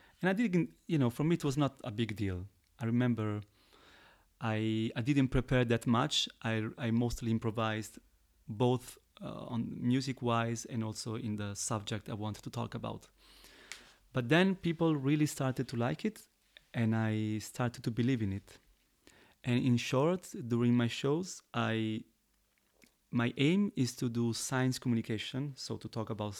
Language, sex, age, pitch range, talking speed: English, male, 30-49, 110-130 Hz, 165 wpm